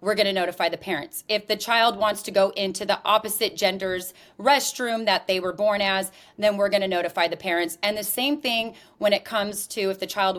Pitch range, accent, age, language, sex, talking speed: 185-220 Hz, American, 30-49, English, female, 230 wpm